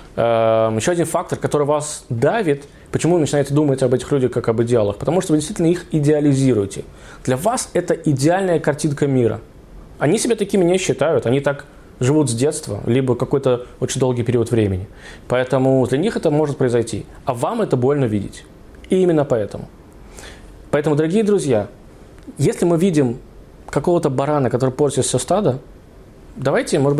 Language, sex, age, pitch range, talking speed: Russian, male, 20-39, 125-155 Hz, 160 wpm